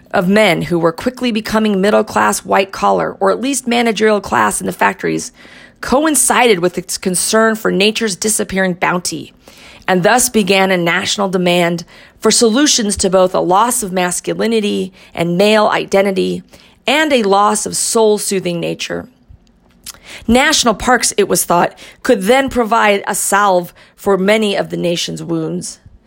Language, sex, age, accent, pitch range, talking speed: English, female, 40-59, American, 180-225 Hz, 145 wpm